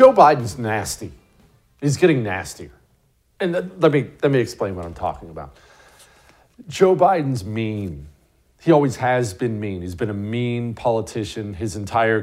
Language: English